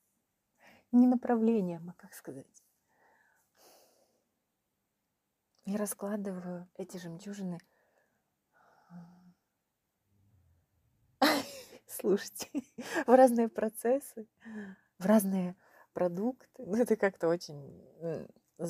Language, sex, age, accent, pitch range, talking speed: Ukrainian, female, 30-49, native, 165-210 Hz, 65 wpm